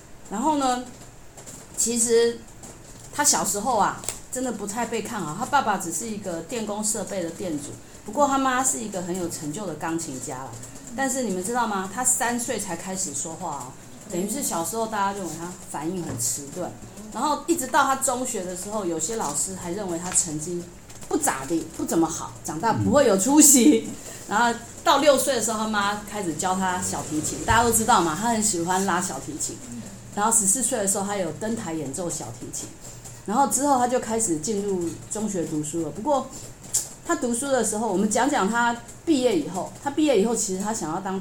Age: 30-49